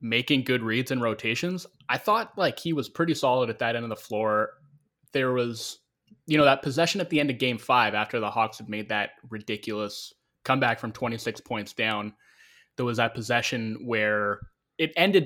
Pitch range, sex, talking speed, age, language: 105-135 Hz, male, 195 wpm, 20-39, English